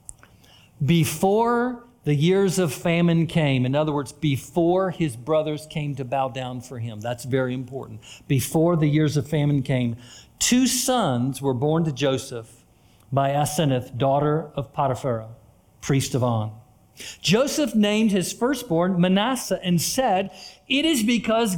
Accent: American